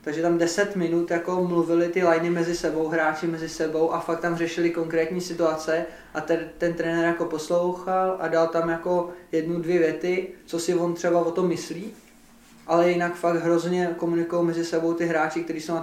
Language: Czech